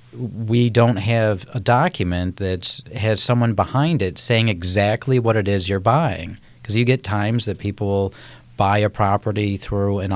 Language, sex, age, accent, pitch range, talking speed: English, male, 40-59, American, 95-120 Hz, 165 wpm